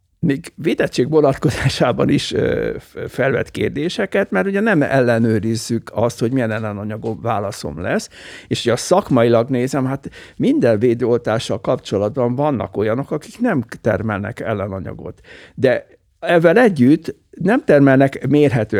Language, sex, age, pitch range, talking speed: Hungarian, male, 60-79, 120-165 Hz, 115 wpm